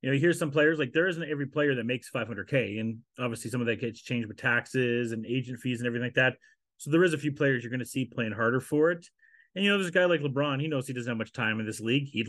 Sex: male